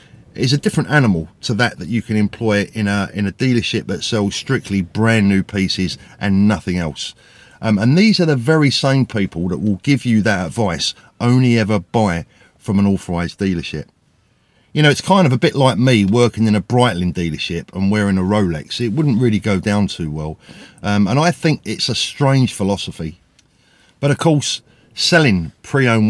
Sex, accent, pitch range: male, British, 95-115 Hz